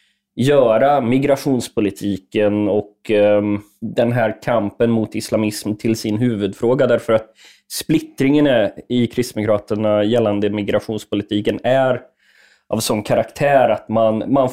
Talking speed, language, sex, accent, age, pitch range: 105 wpm, English, male, Swedish, 20-39, 110-130 Hz